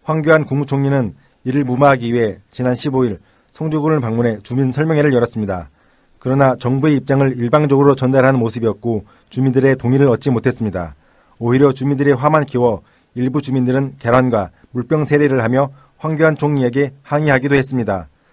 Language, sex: Korean, male